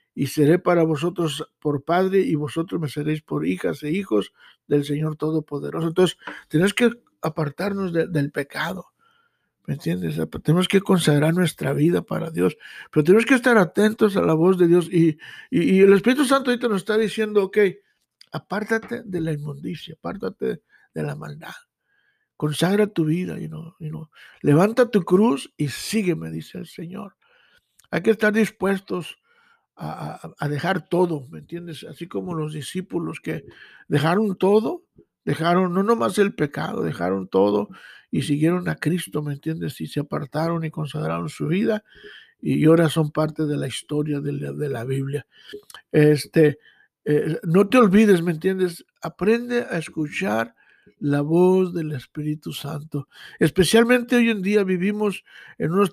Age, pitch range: 60-79, 150-200 Hz